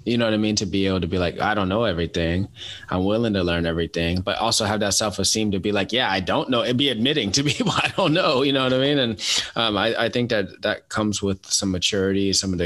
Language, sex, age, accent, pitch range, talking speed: English, male, 20-39, American, 95-115 Hz, 280 wpm